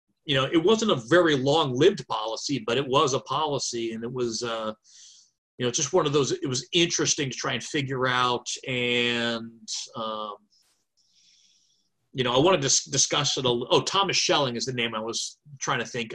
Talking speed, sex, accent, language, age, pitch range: 200 wpm, male, American, English, 30-49, 115-145 Hz